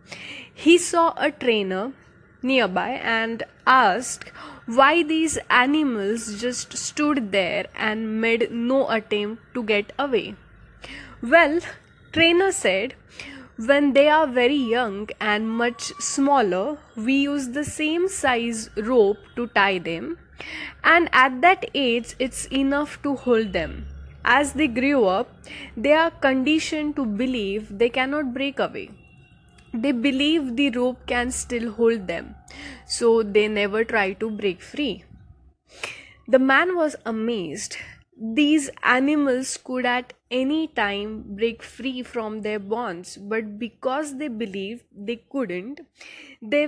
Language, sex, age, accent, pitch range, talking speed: English, female, 10-29, Indian, 225-285 Hz, 125 wpm